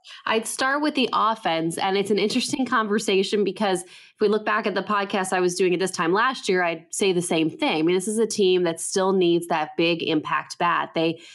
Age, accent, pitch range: 20-39, American, 170-210 Hz